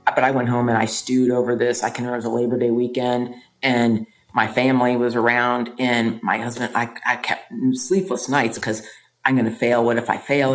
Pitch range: 120-160 Hz